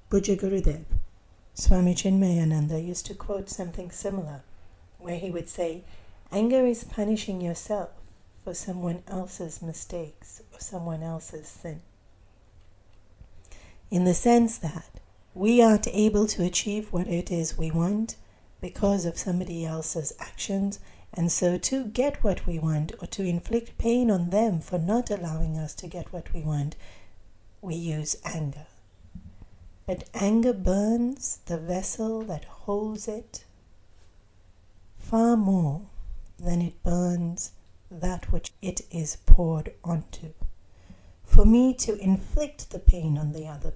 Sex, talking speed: female, 130 wpm